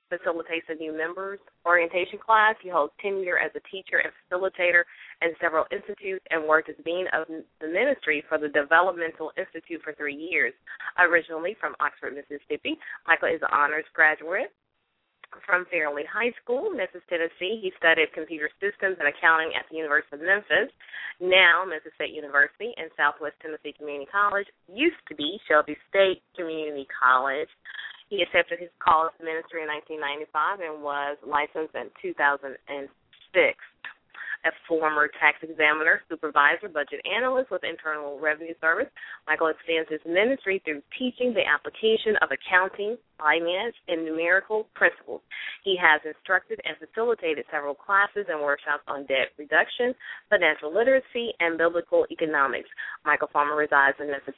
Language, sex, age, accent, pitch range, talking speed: English, female, 20-39, American, 155-205 Hz, 145 wpm